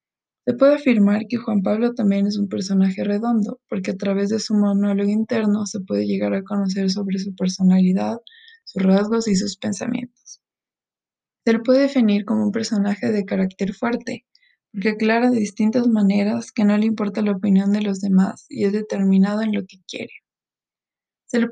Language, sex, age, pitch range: Spanish, female, 20-39, 200-235 Hz